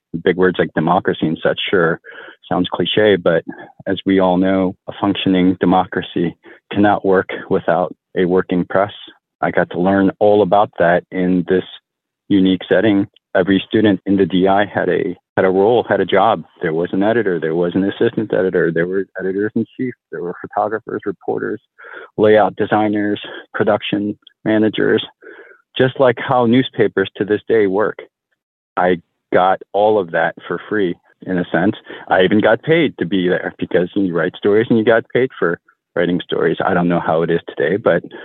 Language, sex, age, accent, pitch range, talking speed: English, male, 40-59, American, 90-105 Hz, 175 wpm